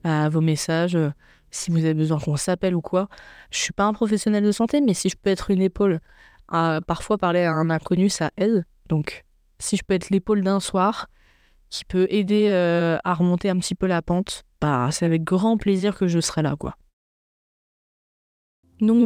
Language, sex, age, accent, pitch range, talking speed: French, female, 20-39, French, 170-210 Hz, 200 wpm